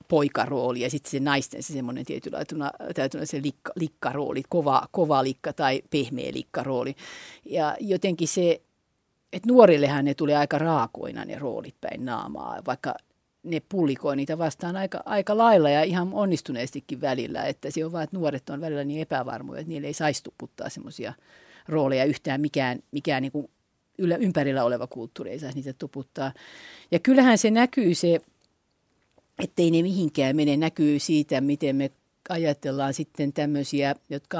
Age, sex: 40-59, female